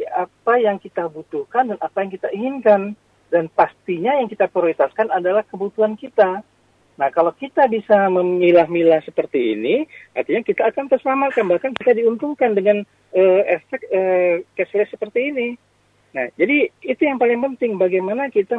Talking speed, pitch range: 150 wpm, 170-255 Hz